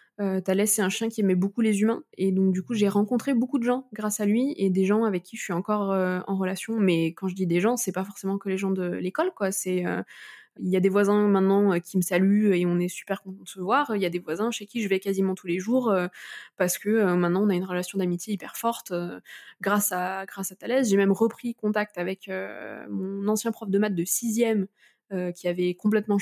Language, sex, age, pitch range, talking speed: French, female, 20-39, 190-225 Hz, 260 wpm